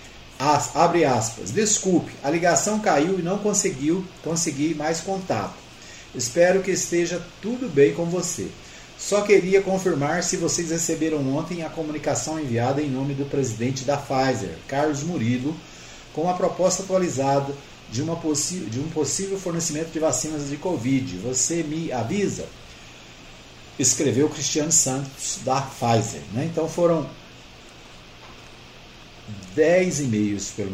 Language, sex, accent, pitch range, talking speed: Portuguese, male, Brazilian, 120-160 Hz, 135 wpm